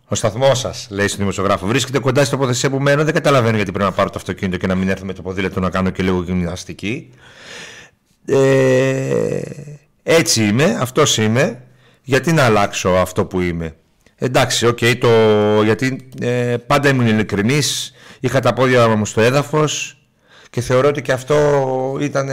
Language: Greek